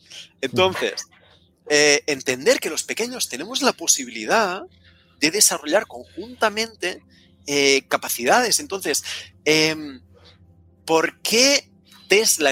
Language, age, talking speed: Spanish, 30-49, 90 wpm